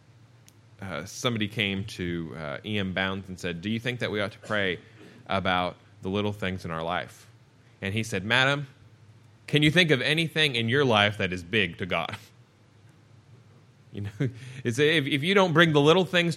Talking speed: 190 wpm